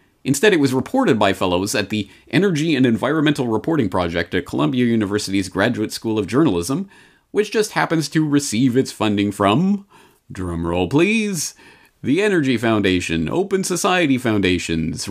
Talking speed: 145 wpm